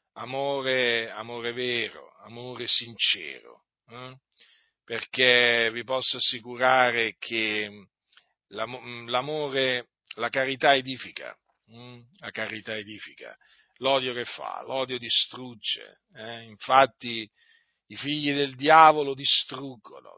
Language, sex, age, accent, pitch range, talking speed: Italian, male, 40-59, native, 115-130 Hz, 90 wpm